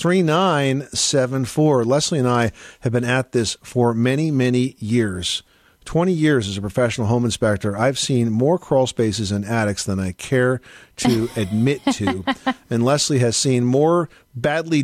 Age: 50-69